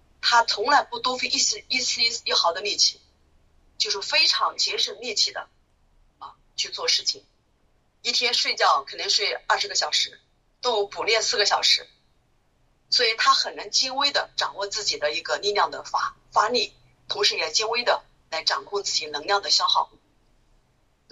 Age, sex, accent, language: 30-49, female, native, Chinese